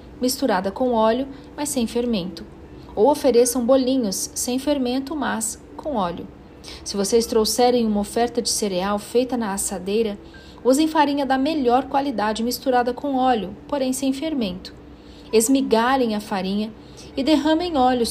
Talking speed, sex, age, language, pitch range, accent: 135 wpm, female, 40-59, Portuguese, 205-255 Hz, Brazilian